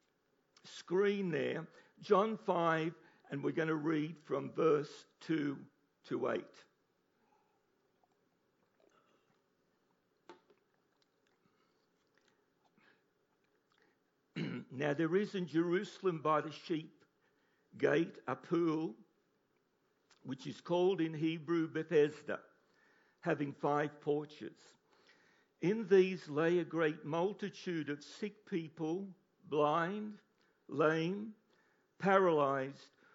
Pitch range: 155-195 Hz